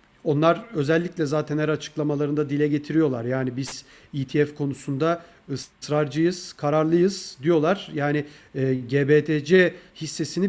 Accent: native